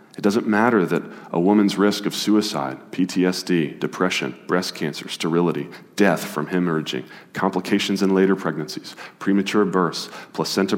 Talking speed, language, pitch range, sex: 135 wpm, English, 80-100 Hz, male